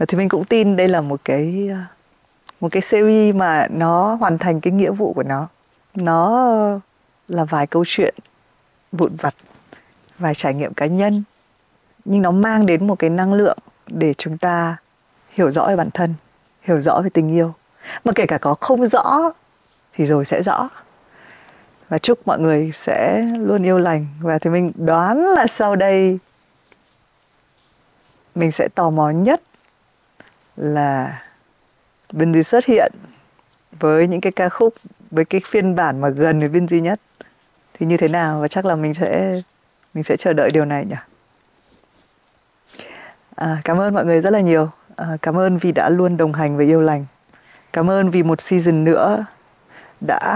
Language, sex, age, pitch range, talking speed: Vietnamese, female, 20-39, 160-200 Hz, 170 wpm